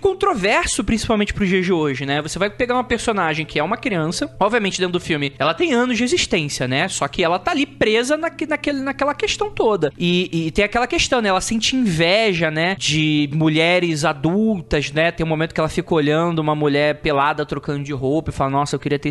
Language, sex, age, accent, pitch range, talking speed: Portuguese, male, 20-39, Brazilian, 170-255 Hz, 215 wpm